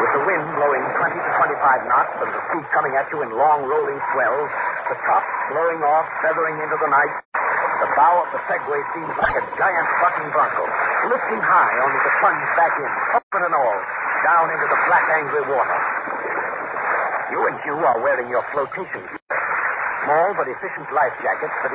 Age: 60-79